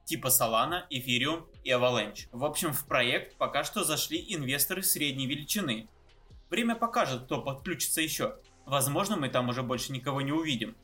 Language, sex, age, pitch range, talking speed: Russian, male, 20-39, 125-170 Hz, 155 wpm